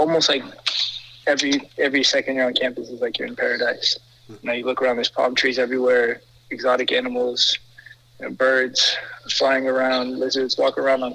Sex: male